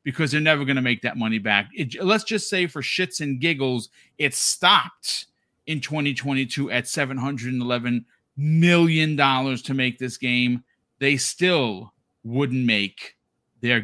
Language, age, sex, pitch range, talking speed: English, 40-59, male, 120-160 Hz, 145 wpm